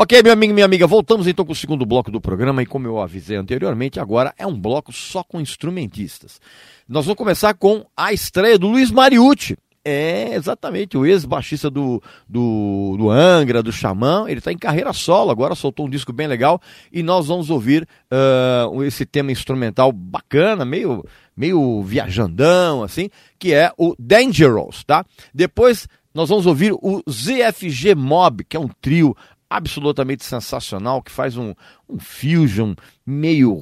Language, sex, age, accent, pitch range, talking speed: Portuguese, male, 40-59, Brazilian, 120-180 Hz, 160 wpm